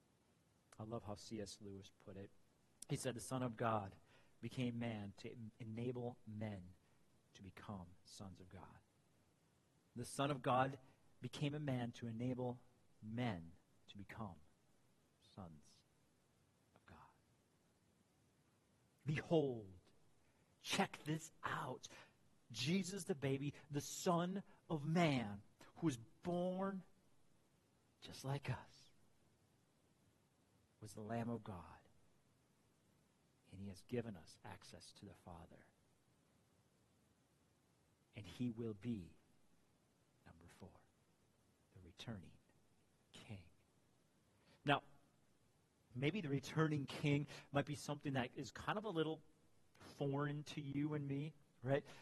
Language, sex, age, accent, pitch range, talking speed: English, male, 50-69, American, 105-145 Hz, 110 wpm